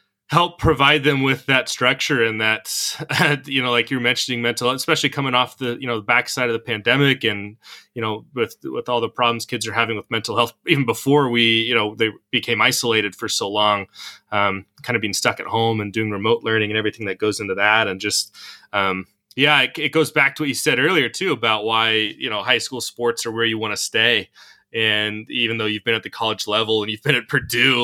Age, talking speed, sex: 20-39, 235 wpm, male